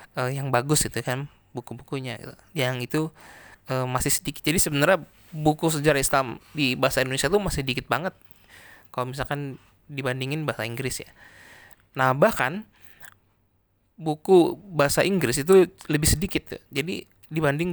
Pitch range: 125-150 Hz